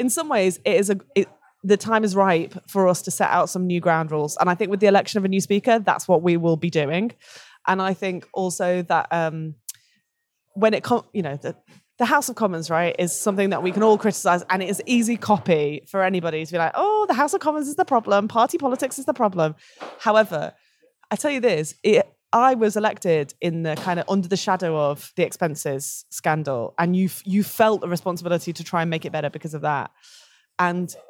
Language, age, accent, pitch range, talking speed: English, 20-39, British, 170-210 Hz, 230 wpm